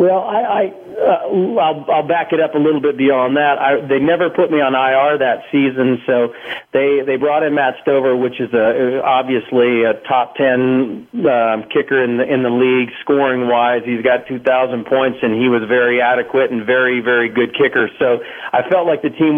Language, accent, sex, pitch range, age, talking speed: English, American, male, 120-145 Hz, 40-59, 210 wpm